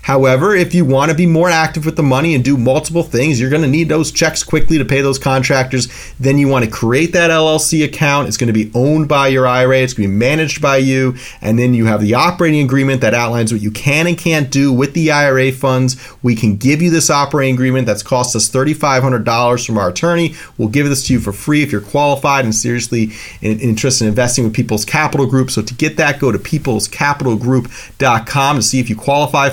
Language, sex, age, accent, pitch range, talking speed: English, male, 30-49, American, 120-155 Hz, 230 wpm